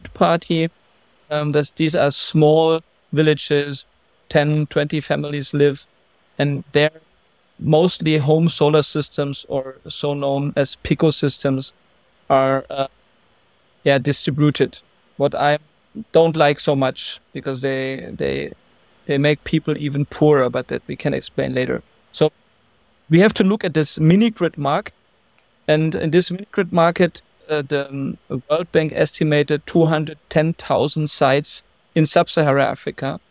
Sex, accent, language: male, German, English